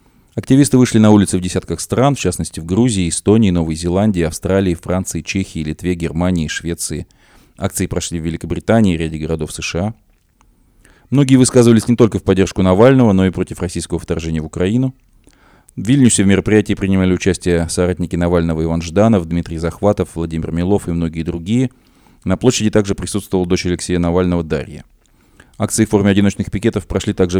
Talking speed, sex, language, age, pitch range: 160 wpm, male, Russian, 20-39, 85-105 Hz